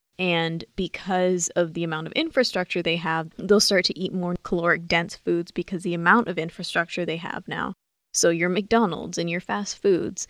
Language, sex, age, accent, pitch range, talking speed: English, female, 20-39, American, 170-195 Hz, 185 wpm